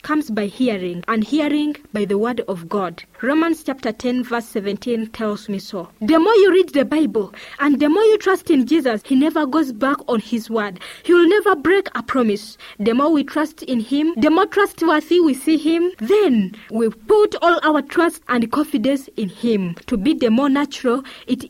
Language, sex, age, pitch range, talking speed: English, female, 20-39, 230-335 Hz, 200 wpm